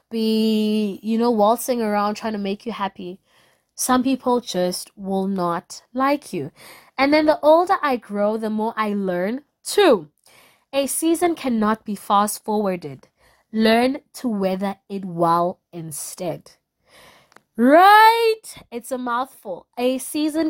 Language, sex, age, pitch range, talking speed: English, female, 20-39, 185-240 Hz, 135 wpm